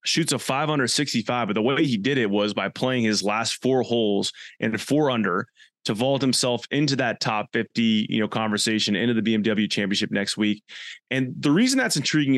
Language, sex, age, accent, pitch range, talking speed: English, male, 20-39, American, 110-140 Hz, 210 wpm